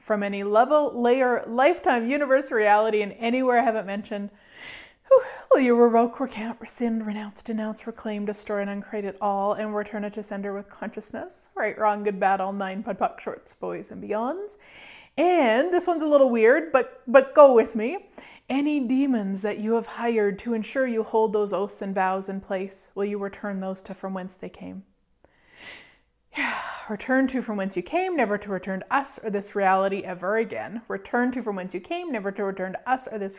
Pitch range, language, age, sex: 200-245 Hz, English, 30-49, female